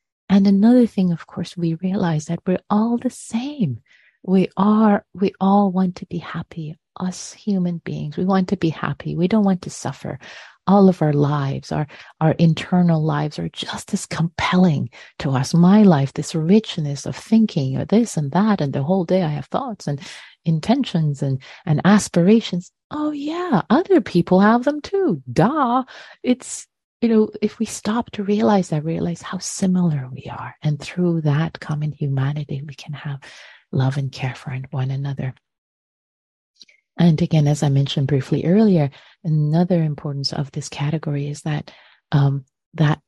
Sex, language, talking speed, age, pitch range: female, English, 170 wpm, 30-49, 150-195 Hz